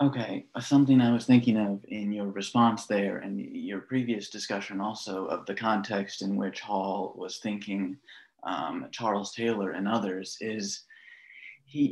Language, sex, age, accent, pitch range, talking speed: English, male, 30-49, American, 100-120 Hz, 155 wpm